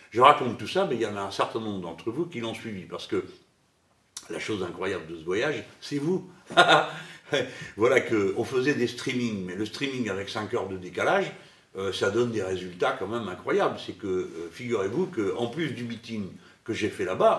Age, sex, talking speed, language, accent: 60-79, male, 205 wpm, French, French